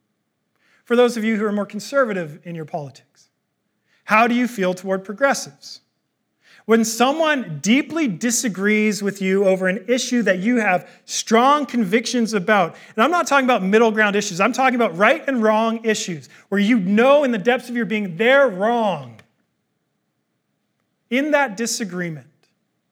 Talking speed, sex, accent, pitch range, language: 160 wpm, male, American, 170-220 Hz, English